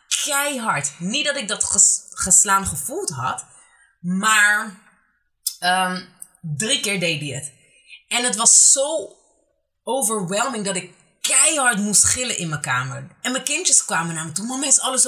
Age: 20-39